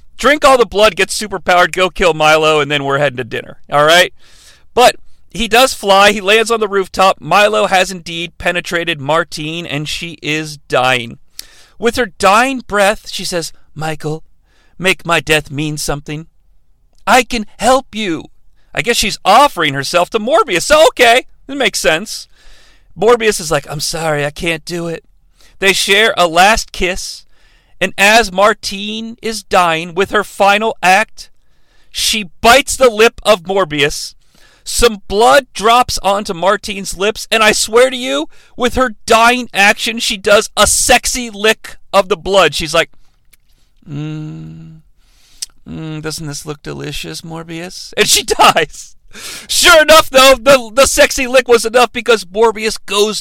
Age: 40-59